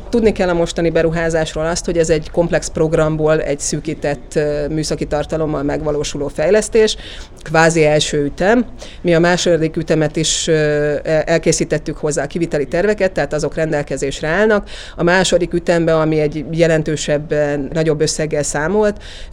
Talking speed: 130 wpm